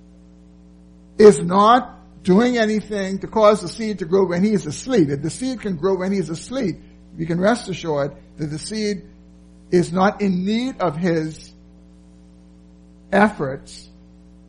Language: English